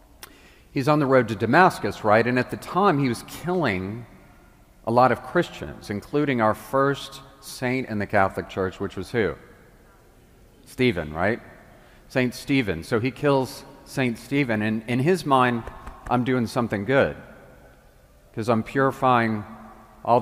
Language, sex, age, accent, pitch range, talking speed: English, male, 40-59, American, 110-135 Hz, 150 wpm